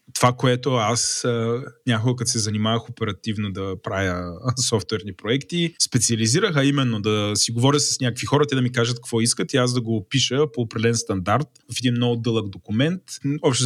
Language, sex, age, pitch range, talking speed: Bulgarian, male, 20-39, 110-135 Hz, 180 wpm